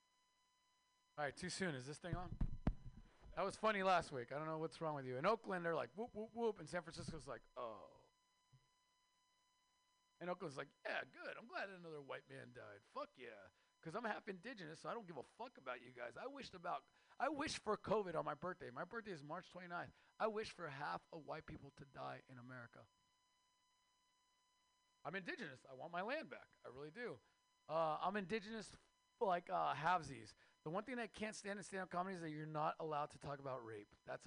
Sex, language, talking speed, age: male, English, 210 wpm, 40-59